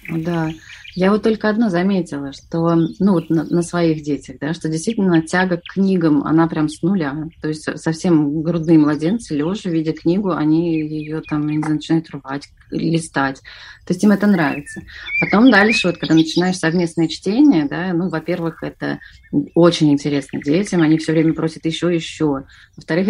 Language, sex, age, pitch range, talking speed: Russian, female, 30-49, 155-185 Hz, 150 wpm